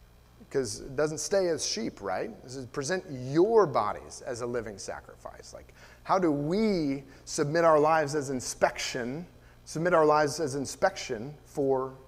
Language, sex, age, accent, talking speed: English, male, 30-49, American, 155 wpm